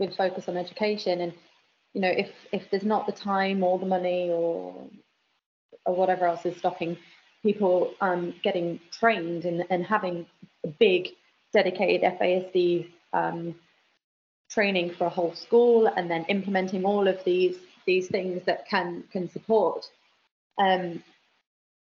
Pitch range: 185-240 Hz